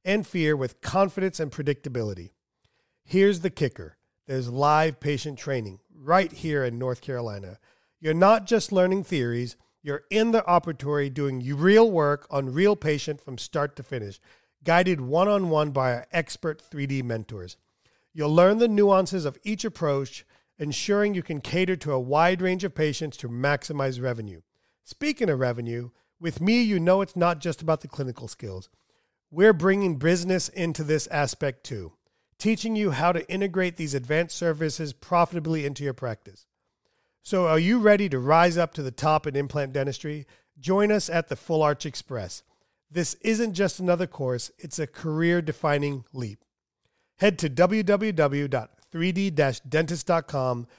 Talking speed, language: 150 wpm, English